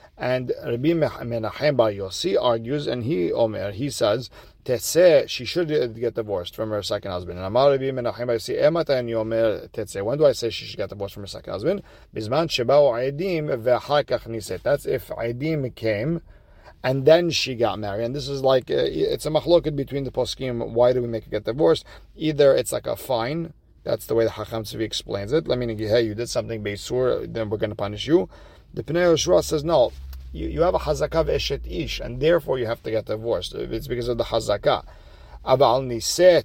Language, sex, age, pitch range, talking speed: English, male, 40-59, 110-150 Hz, 190 wpm